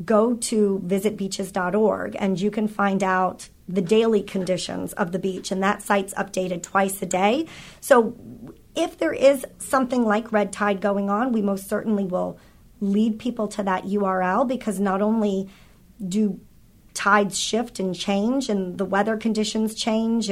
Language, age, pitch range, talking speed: English, 40-59, 195-220 Hz, 155 wpm